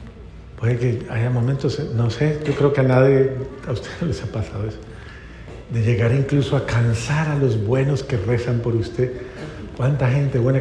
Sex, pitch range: male, 110-135 Hz